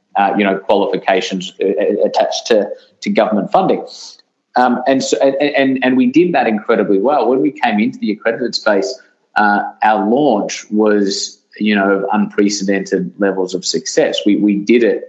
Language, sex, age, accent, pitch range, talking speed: English, male, 20-39, Australian, 100-130 Hz, 165 wpm